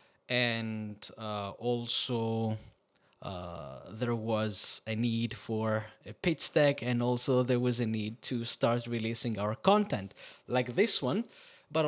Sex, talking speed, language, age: male, 135 wpm, English, 20-39